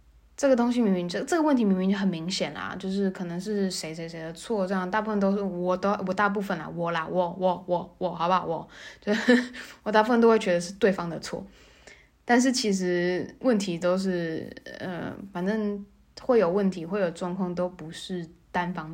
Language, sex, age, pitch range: Chinese, female, 10-29, 180-240 Hz